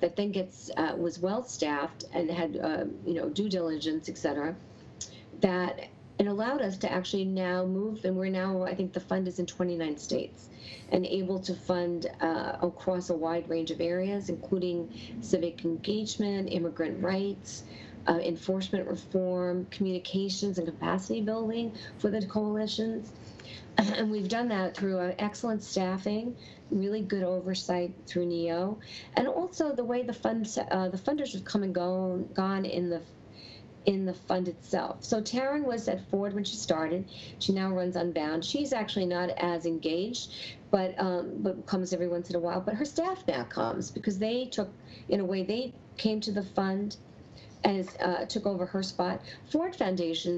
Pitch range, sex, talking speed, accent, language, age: 175-210 Hz, female, 170 wpm, American, English, 40-59